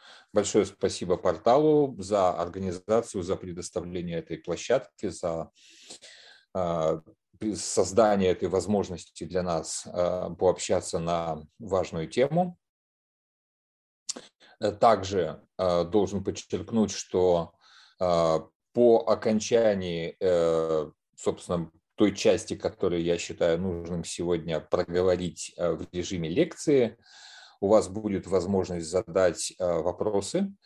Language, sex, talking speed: Russian, male, 85 wpm